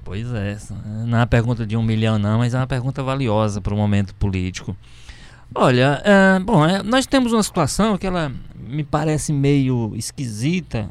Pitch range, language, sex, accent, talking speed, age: 105-135 Hz, Portuguese, male, Brazilian, 180 wpm, 20-39